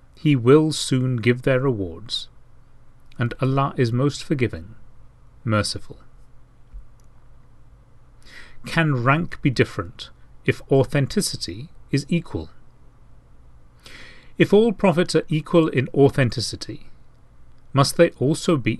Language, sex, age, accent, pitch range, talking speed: English, male, 40-59, British, 110-145 Hz, 100 wpm